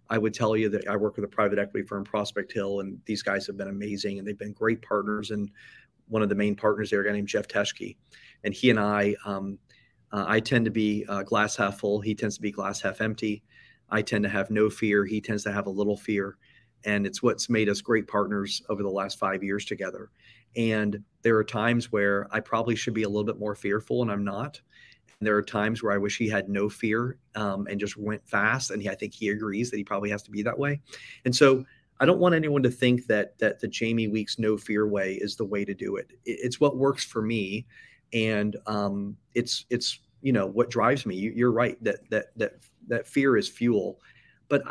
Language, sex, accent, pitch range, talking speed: English, male, American, 100-115 Hz, 240 wpm